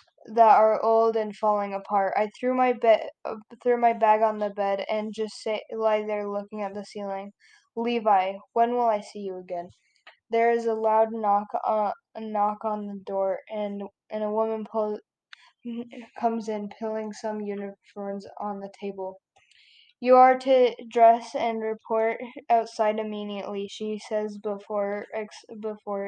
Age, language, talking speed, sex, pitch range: 10-29, English, 160 wpm, female, 205-230 Hz